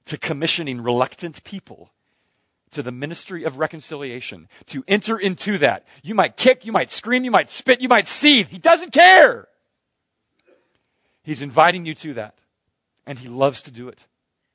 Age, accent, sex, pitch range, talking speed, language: 40-59, American, male, 130-190 Hz, 160 wpm, English